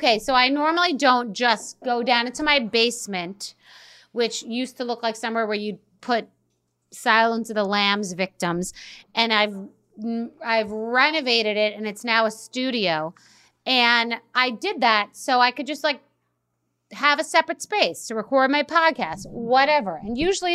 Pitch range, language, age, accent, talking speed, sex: 205-260 Hz, English, 30-49, American, 160 wpm, female